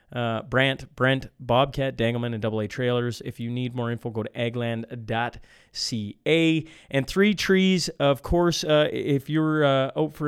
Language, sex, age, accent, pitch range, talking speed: English, male, 30-49, American, 120-145 Hz, 160 wpm